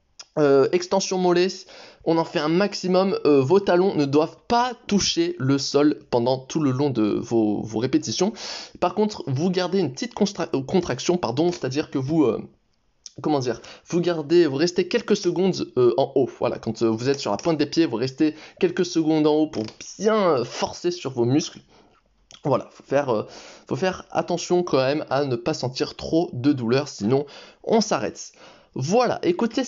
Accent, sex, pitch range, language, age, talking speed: French, male, 135-185 Hz, French, 20-39, 190 wpm